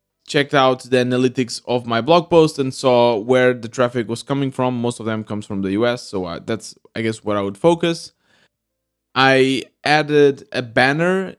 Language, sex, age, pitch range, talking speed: English, male, 20-39, 110-140 Hz, 185 wpm